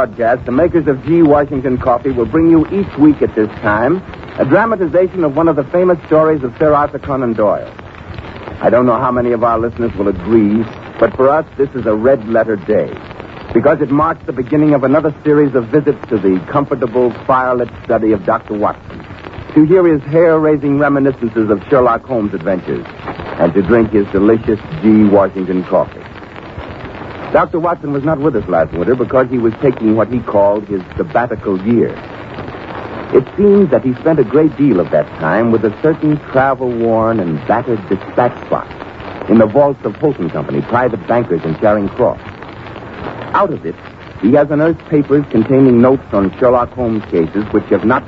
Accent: American